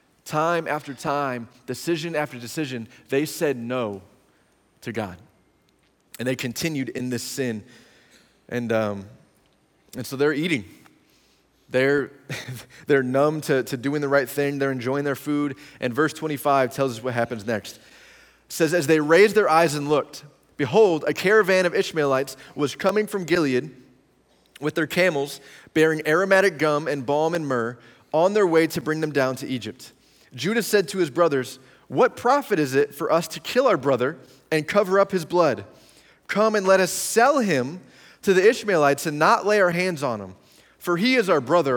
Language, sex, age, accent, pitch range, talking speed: English, male, 20-39, American, 130-170 Hz, 175 wpm